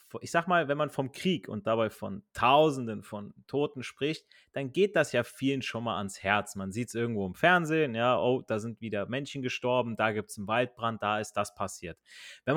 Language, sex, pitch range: German, male, 115-170 Hz